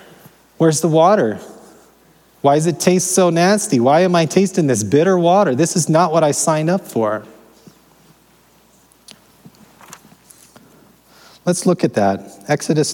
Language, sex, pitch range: English, male, 115-150 Hz